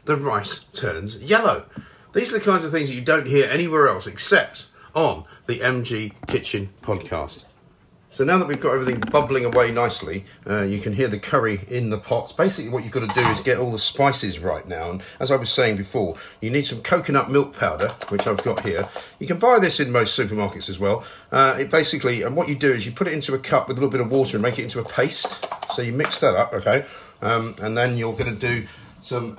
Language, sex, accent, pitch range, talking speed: English, male, British, 110-140 Hz, 240 wpm